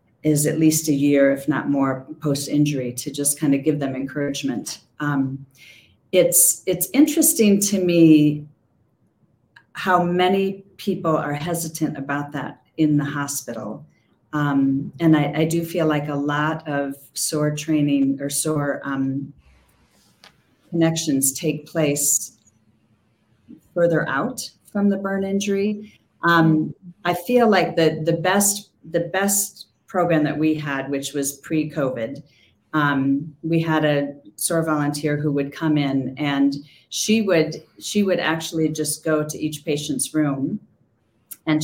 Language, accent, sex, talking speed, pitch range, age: English, American, female, 140 wpm, 140-165 Hz, 40-59